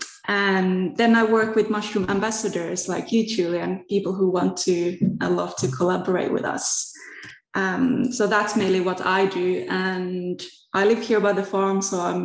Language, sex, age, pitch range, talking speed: English, female, 20-39, 185-220 Hz, 175 wpm